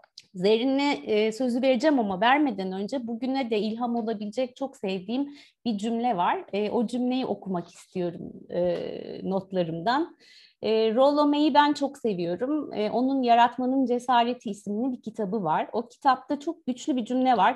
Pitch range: 200-275 Hz